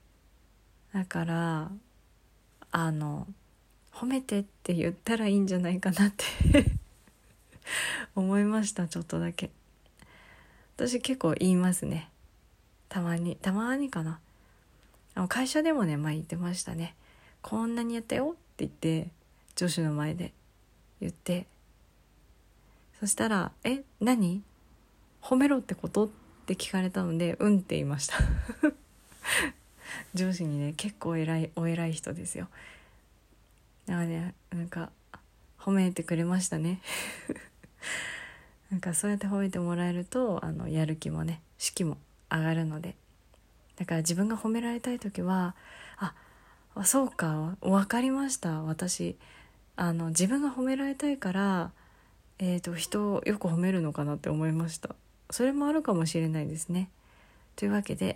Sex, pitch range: female, 160-205 Hz